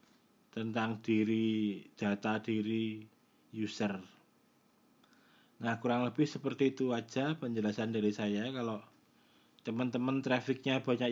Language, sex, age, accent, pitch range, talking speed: Indonesian, male, 20-39, native, 110-125 Hz, 95 wpm